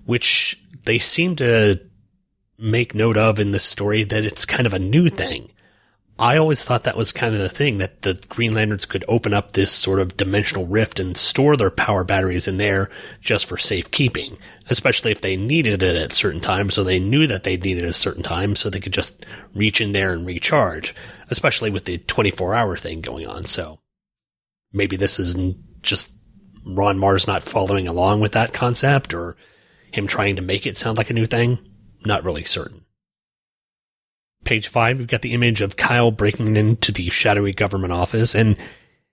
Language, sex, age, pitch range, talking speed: English, male, 30-49, 95-120 Hz, 190 wpm